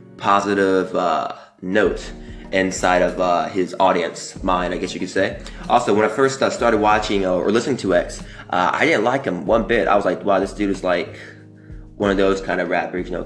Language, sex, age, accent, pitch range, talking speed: English, male, 20-39, American, 95-110 Hz, 220 wpm